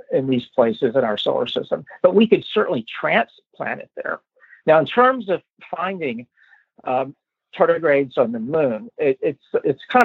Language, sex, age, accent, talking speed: English, male, 50-69, American, 160 wpm